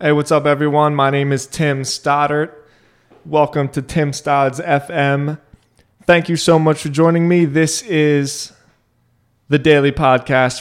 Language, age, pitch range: English, 20-39, 120-155 Hz